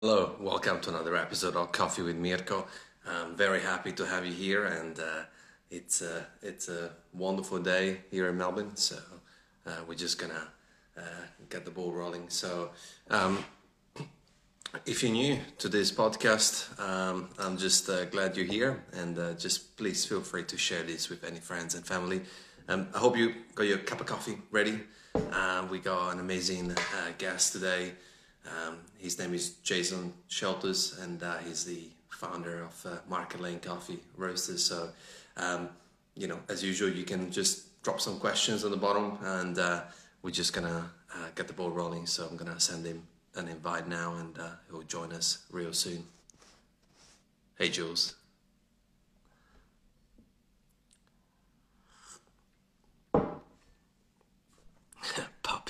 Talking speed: 160 wpm